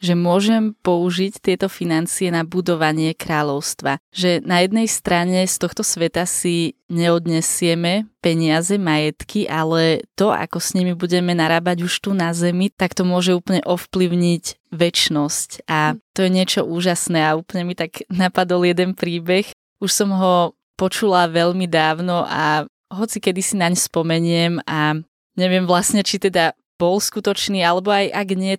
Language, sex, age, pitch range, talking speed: Slovak, female, 20-39, 165-190 Hz, 150 wpm